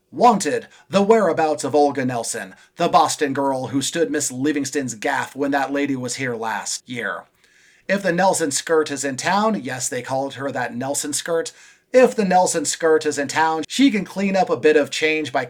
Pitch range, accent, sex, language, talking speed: 140-180 Hz, American, male, English, 200 wpm